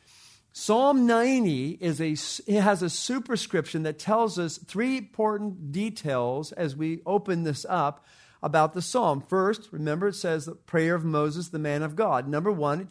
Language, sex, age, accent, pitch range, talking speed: English, male, 50-69, American, 150-205 Hz, 170 wpm